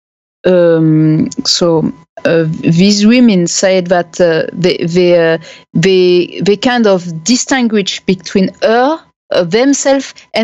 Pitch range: 170-215 Hz